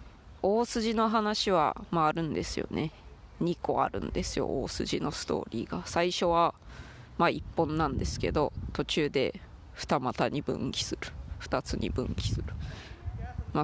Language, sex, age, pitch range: Japanese, female, 20-39, 110-175 Hz